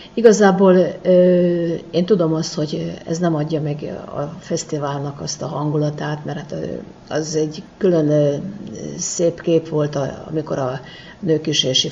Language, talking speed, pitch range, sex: Hungarian, 125 wpm, 145-170 Hz, female